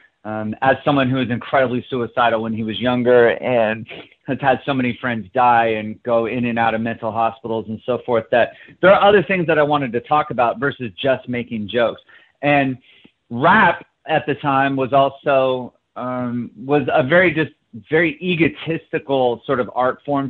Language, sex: English, male